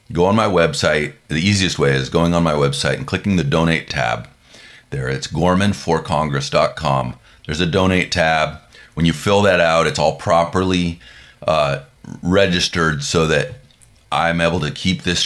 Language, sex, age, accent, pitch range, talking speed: English, male, 30-49, American, 80-95 Hz, 160 wpm